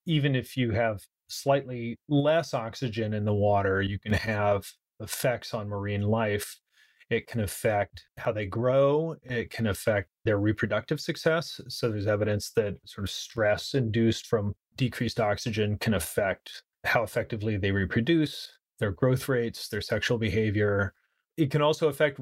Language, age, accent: English, 30-49, American